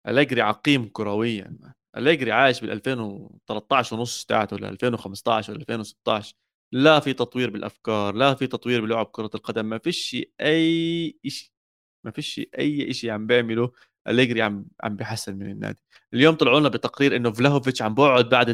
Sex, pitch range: male, 110-140 Hz